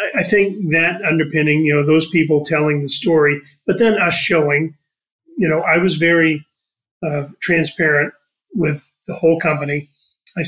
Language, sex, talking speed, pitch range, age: English, male, 155 wpm, 150-170 Hz, 40-59